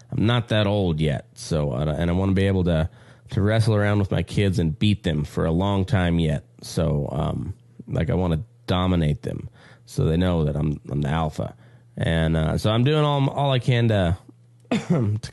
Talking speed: 210 wpm